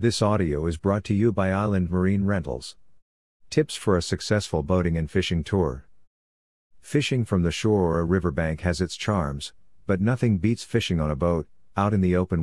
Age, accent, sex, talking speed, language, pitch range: 50-69, American, male, 190 wpm, English, 85-100 Hz